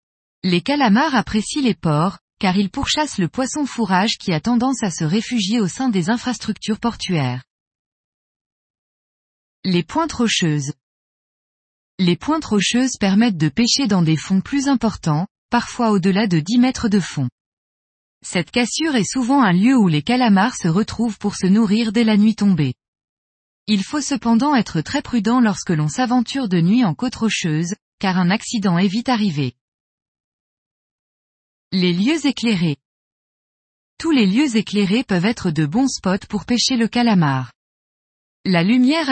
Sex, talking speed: female, 150 wpm